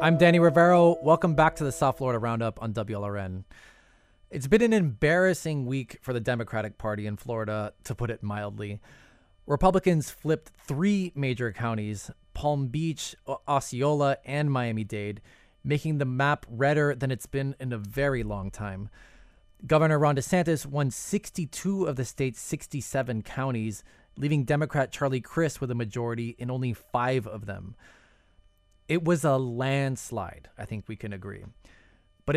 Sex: male